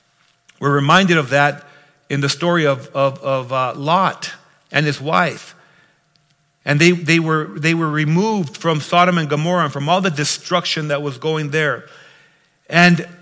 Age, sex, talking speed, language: 50-69, male, 160 wpm, English